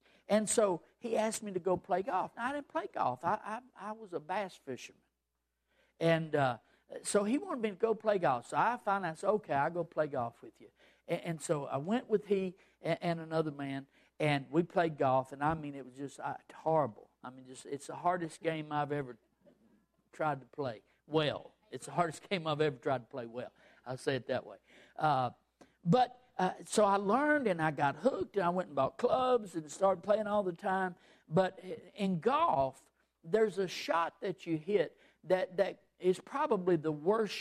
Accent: American